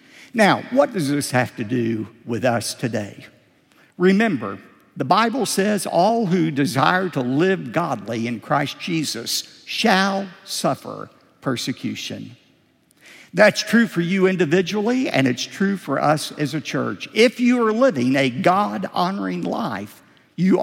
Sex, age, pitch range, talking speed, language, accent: male, 50-69, 130-215 Hz, 135 wpm, English, American